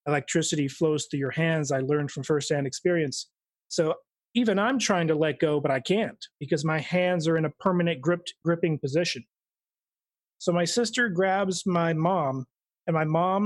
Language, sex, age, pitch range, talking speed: English, male, 30-49, 150-185 Hz, 175 wpm